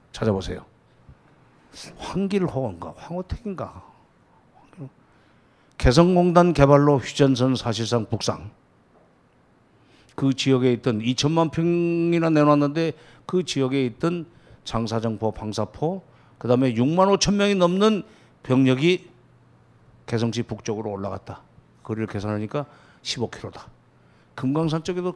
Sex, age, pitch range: male, 50-69, 120-180 Hz